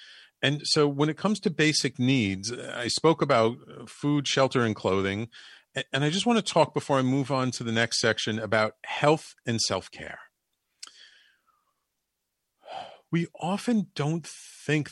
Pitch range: 110-155 Hz